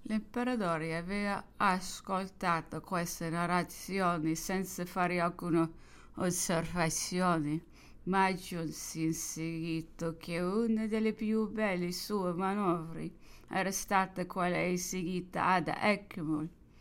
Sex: female